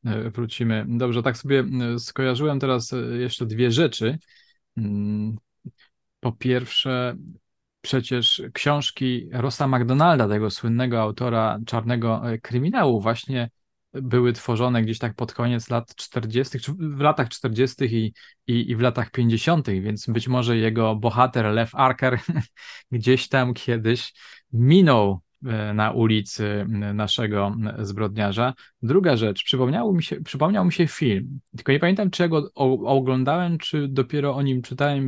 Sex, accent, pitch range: male, native, 115-135 Hz